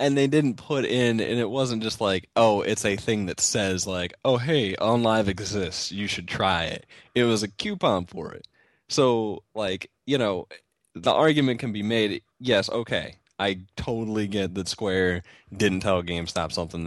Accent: American